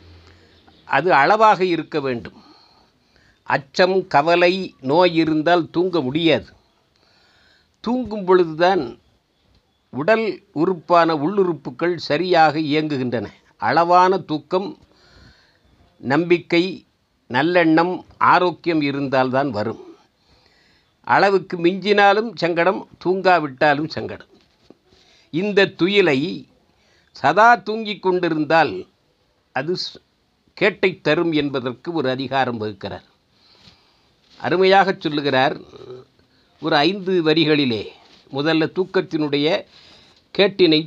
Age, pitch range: 50-69, 140-185 Hz